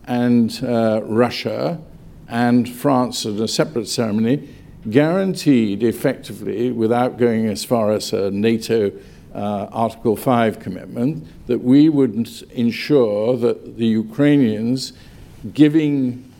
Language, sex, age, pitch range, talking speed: English, male, 50-69, 115-140 Hz, 110 wpm